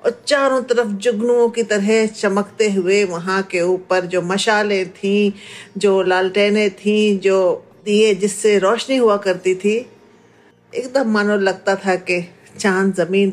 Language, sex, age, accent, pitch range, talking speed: Hindi, female, 50-69, native, 185-230 Hz, 140 wpm